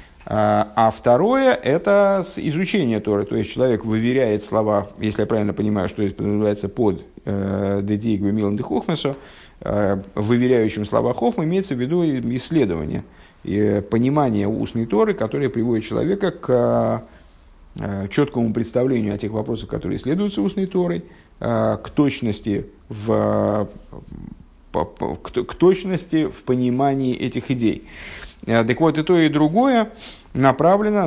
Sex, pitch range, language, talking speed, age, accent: male, 105-155 Hz, Russian, 130 wpm, 50-69, native